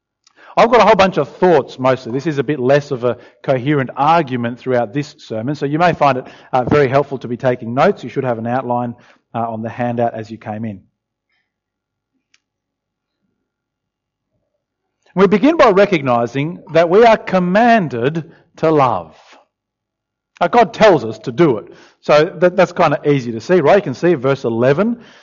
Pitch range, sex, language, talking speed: 130-190 Hz, male, English, 170 wpm